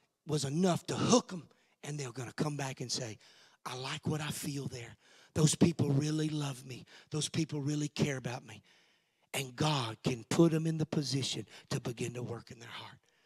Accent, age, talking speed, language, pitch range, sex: American, 40-59, 205 wpm, English, 140-200 Hz, male